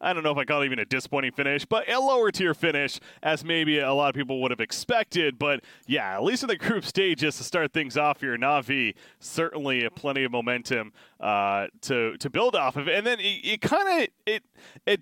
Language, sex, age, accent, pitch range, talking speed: English, male, 30-49, American, 130-170 Hz, 230 wpm